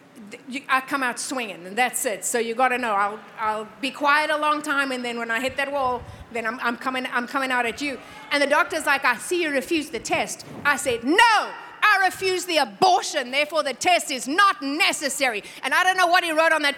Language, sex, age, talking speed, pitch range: English, female, 30-49, 240 wpm, 275-365 Hz